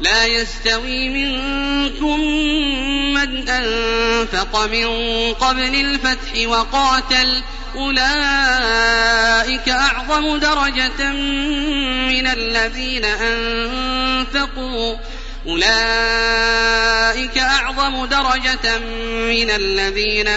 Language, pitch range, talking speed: Arabic, 230-275 Hz, 40 wpm